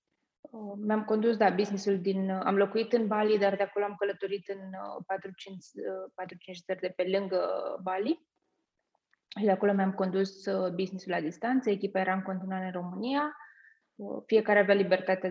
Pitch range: 185-225 Hz